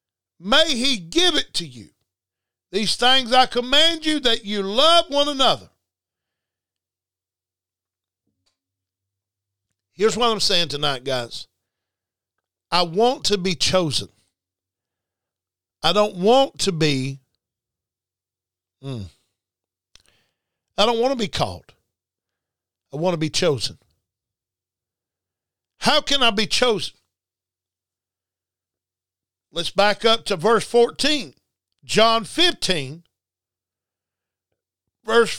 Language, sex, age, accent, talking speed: English, male, 50-69, American, 100 wpm